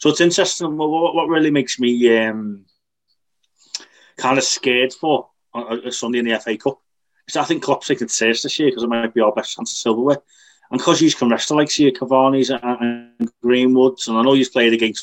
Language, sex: English, male